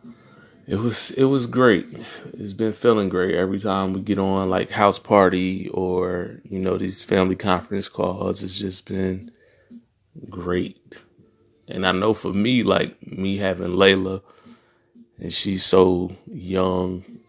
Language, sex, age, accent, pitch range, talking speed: English, male, 20-39, American, 90-100 Hz, 140 wpm